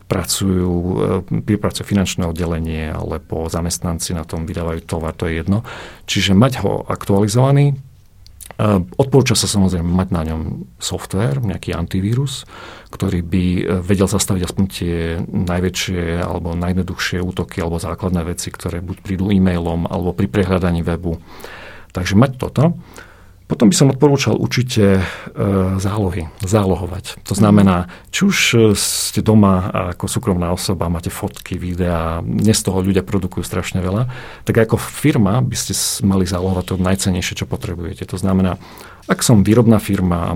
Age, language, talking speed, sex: 40-59, Slovak, 140 wpm, male